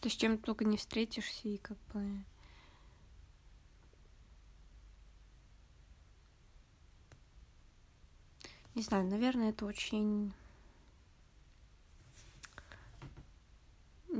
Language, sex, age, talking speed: Russian, female, 20-39, 60 wpm